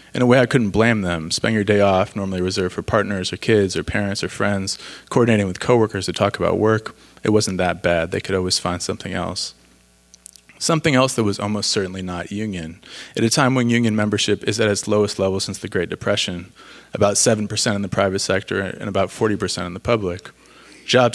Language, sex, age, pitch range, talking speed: English, male, 20-39, 95-110 Hz, 210 wpm